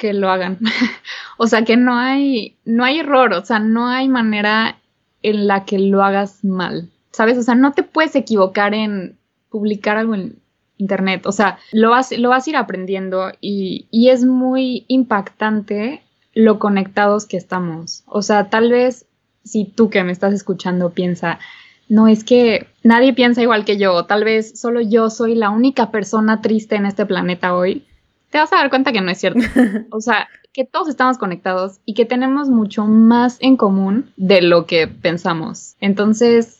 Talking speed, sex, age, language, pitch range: 180 wpm, female, 20-39, Spanish, 190-235 Hz